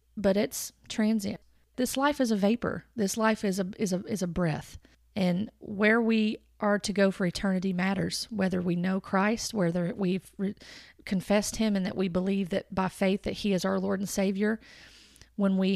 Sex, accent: female, American